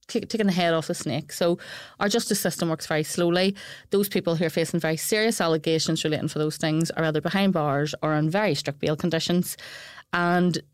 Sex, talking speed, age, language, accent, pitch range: female, 200 wpm, 30-49, English, Irish, 160-190 Hz